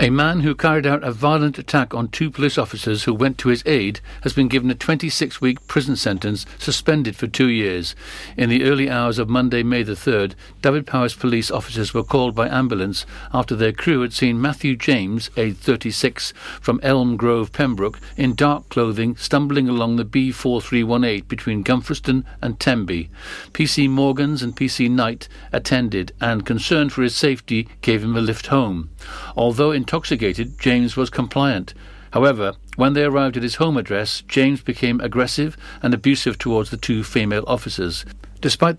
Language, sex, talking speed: English, male, 170 wpm